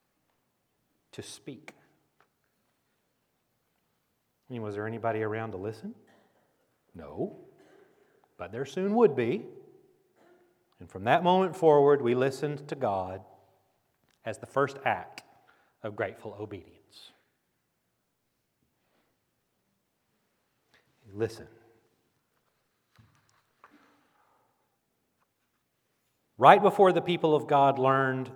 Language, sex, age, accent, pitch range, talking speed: English, male, 40-59, American, 120-195 Hz, 85 wpm